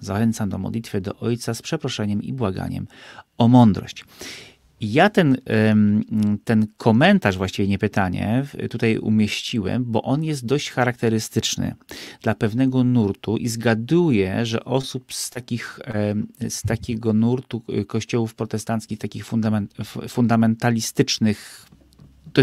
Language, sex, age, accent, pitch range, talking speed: Polish, male, 30-49, native, 105-130 Hz, 115 wpm